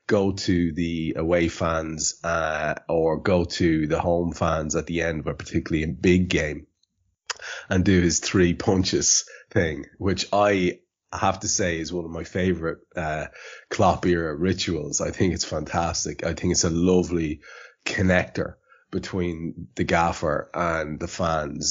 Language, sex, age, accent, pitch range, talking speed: English, male, 30-49, Irish, 80-95 Hz, 155 wpm